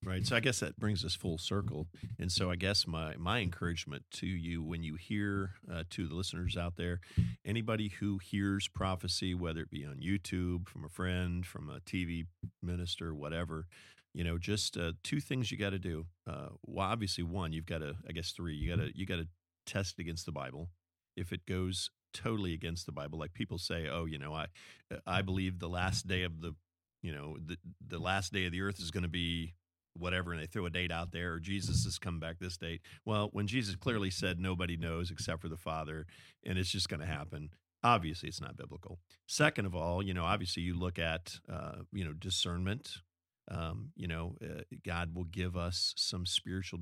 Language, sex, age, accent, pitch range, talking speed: English, male, 40-59, American, 85-95 Hz, 215 wpm